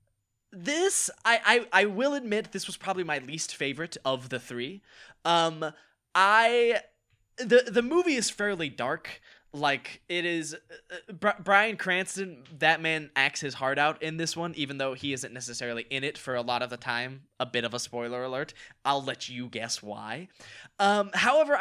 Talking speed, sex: 180 wpm, male